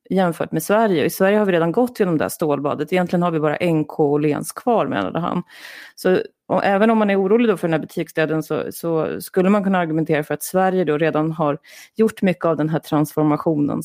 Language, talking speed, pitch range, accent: Swedish, 220 wpm, 165-220 Hz, native